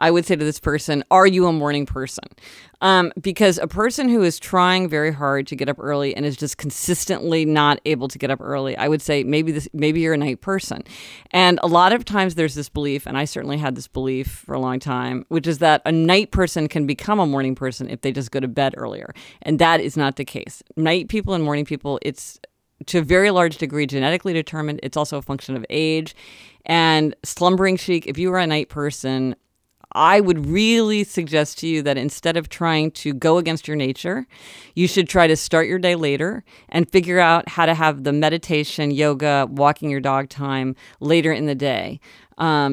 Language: English